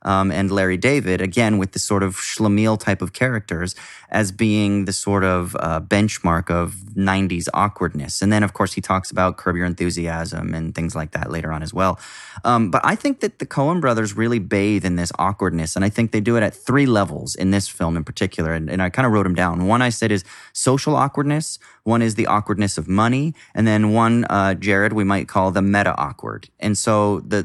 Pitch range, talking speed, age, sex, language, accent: 95-120 Hz, 220 wpm, 20-39, male, English, American